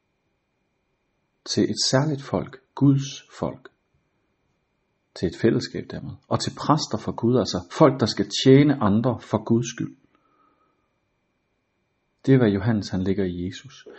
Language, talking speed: Danish, 135 wpm